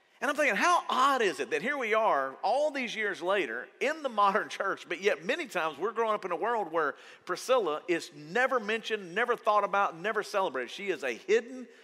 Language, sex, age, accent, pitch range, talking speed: English, male, 40-59, American, 170-260 Hz, 220 wpm